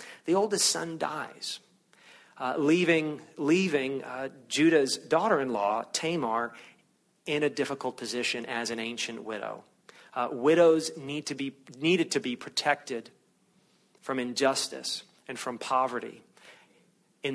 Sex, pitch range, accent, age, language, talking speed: male, 125-155 Hz, American, 40-59, English, 130 wpm